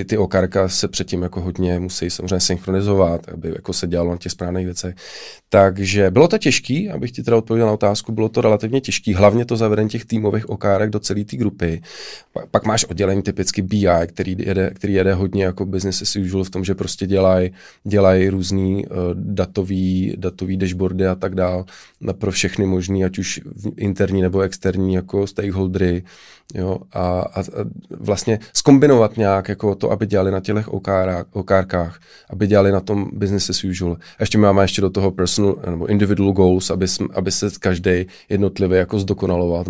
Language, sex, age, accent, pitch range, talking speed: Czech, male, 20-39, native, 95-105 Hz, 170 wpm